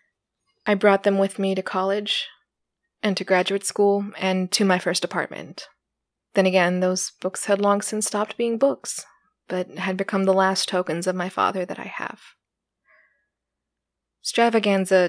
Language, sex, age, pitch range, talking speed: English, female, 20-39, 185-205 Hz, 155 wpm